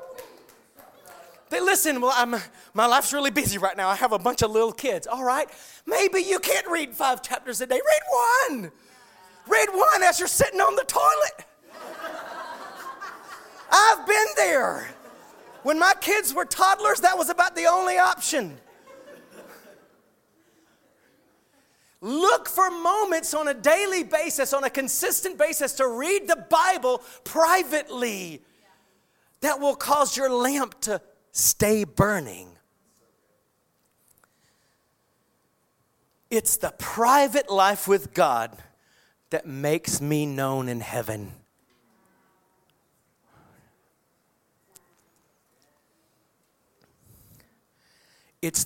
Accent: American